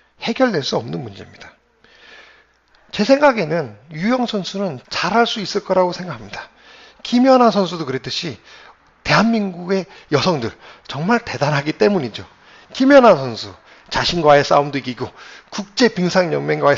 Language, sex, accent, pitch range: Korean, male, native, 145-205 Hz